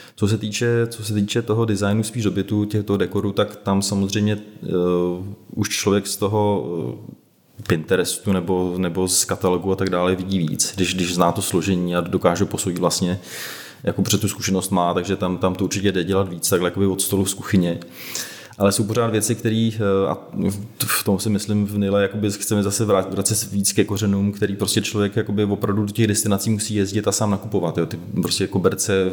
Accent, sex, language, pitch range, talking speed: native, male, Czech, 90-105 Hz, 195 wpm